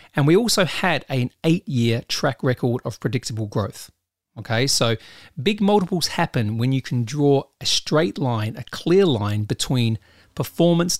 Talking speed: 155 wpm